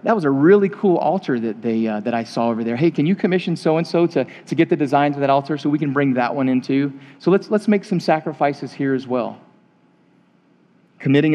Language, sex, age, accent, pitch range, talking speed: English, male, 40-59, American, 125-155 Hz, 240 wpm